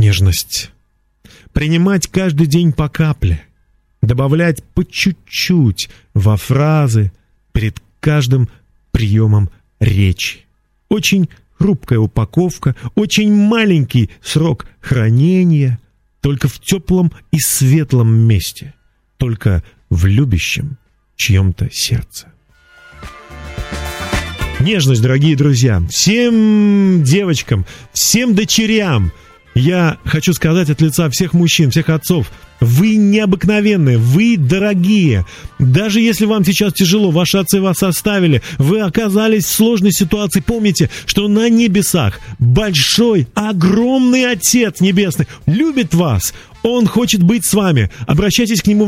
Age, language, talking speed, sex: 40-59, Russian, 105 wpm, male